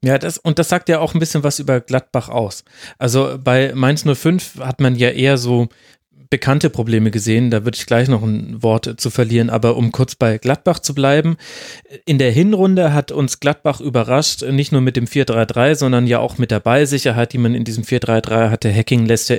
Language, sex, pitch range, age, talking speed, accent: German, male, 125-150 Hz, 30-49, 210 wpm, German